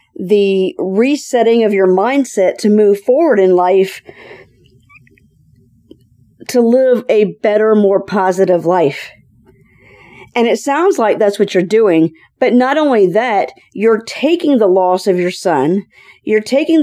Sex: female